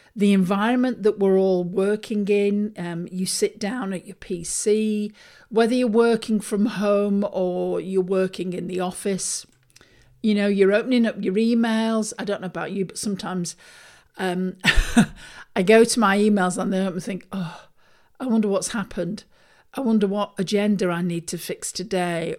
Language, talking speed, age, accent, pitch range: English, 165 wpm, 50-69, British, 185-215 Hz